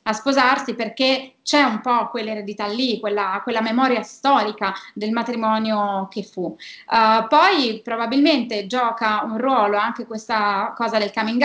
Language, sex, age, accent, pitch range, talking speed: Italian, female, 20-39, native, 205-245 Hz, 135 wpm